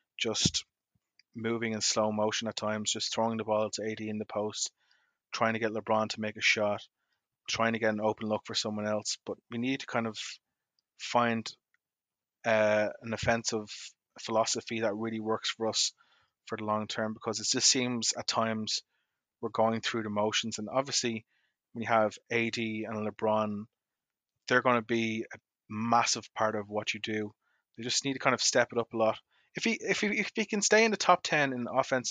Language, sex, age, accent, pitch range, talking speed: English, male, 20-39, Irish, 110-120 Hz, 200 wpm